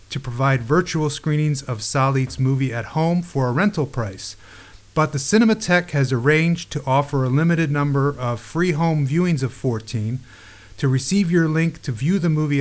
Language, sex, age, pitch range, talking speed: English, male, 30-49, 120-150 Hz, 175 wpm